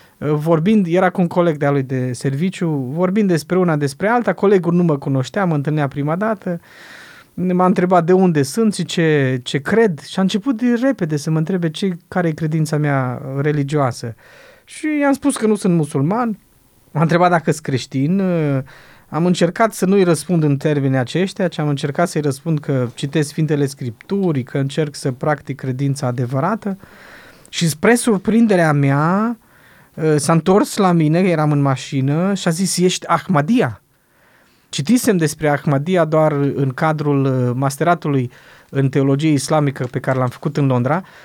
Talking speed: 160 wpm